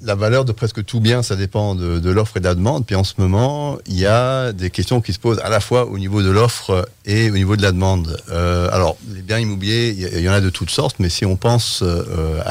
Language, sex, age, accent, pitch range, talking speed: French, male, 40-59, French, 90-115 Hz, 275 wpm